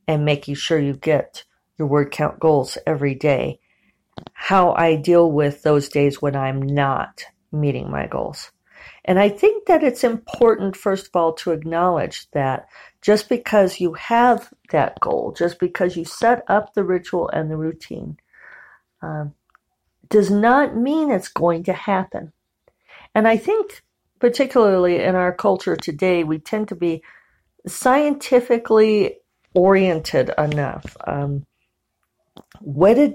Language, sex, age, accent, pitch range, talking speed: English, female, 50-69, American, 155-220 Hz, 140 wpm